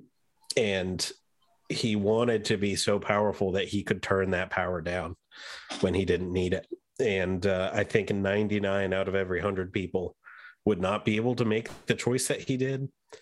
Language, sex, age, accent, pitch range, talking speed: English, male, 30-49, American, 95-110 Hz, 185 wpm